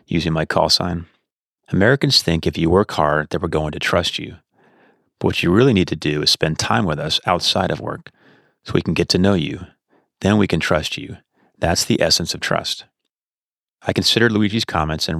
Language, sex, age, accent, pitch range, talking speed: English, male, 30-49, American, 80-95 Hz, 210 wpm